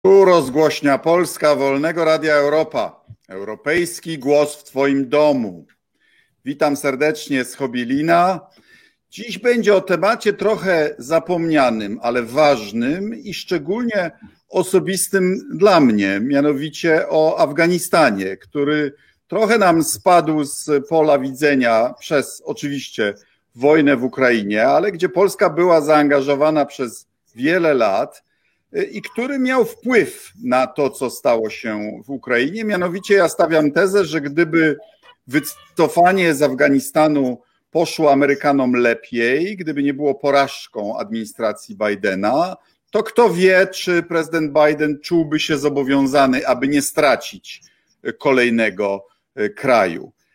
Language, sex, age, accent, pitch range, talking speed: Polish, male, 50-69, native, 140-180 Hz, 110 wpm